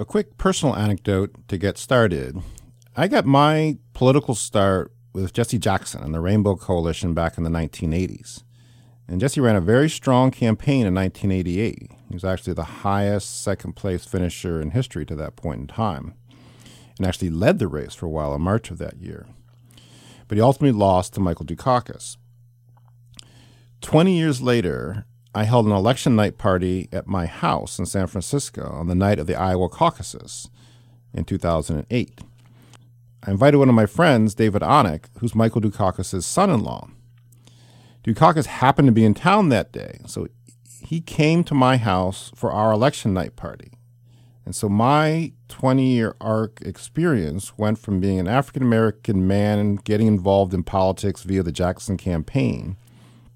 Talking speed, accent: 160 wpm, American